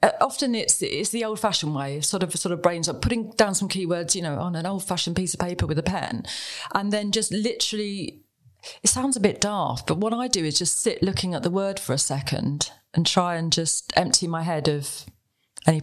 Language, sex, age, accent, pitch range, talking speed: English, female, 30-49, British, 160-215 Hz, 225 wpm